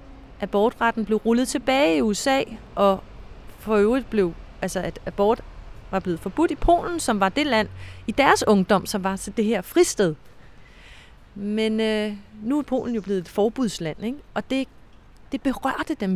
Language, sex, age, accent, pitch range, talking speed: Danish, female, 30-49, native, 195-260 Hz, 165 wpm